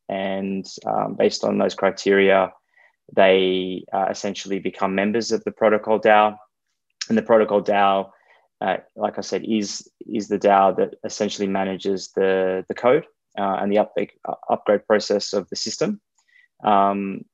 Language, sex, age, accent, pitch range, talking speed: English, male, 20-39, Australian, 95-110 Hz, 145 wpm